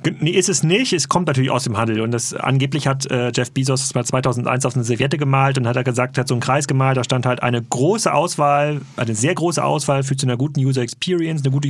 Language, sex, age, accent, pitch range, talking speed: German, male, 30-49, German, 135-175 Hz, 265 wpm